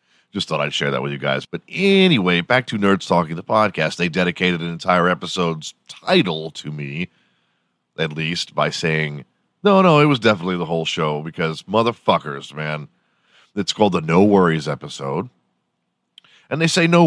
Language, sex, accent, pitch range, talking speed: English, male, American, 80-100 Hz, 170 wpm